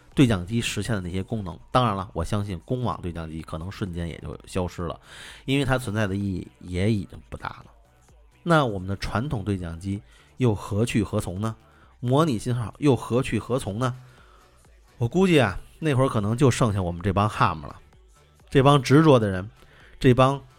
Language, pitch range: Chinese, 95-130 Hz